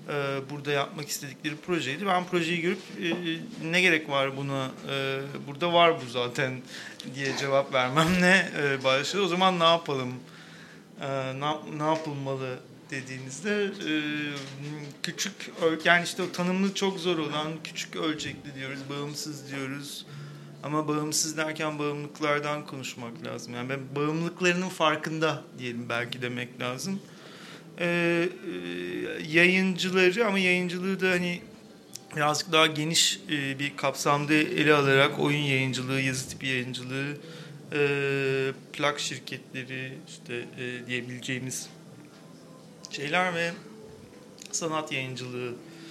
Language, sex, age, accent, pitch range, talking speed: Turkish, male, 40-59, native, 135-170 Hz, 110 wpm